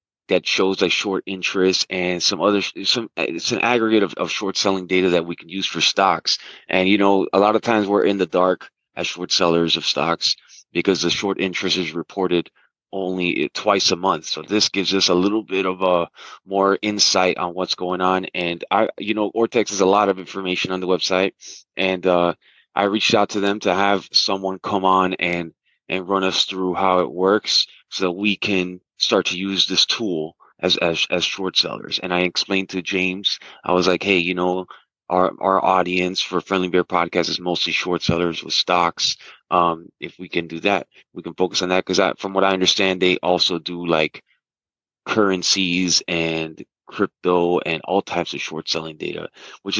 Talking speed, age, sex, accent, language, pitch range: 200 wpm, 20-39, male, American, English, 90-100 Hz